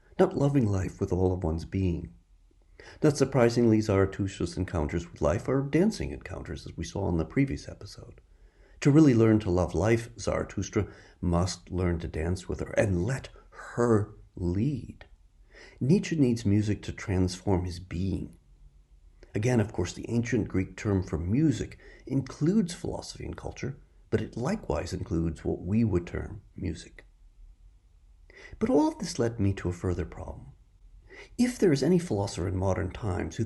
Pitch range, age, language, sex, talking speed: 90-115 Hz, 50-69, English, male, 160 wpm